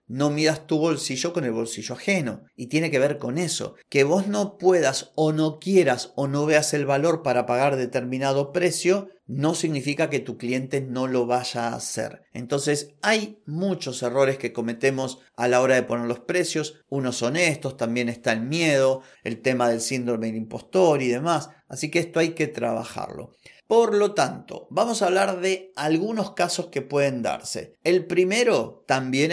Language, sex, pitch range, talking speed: Spanish, male, 130-175 Hz, 180 wpm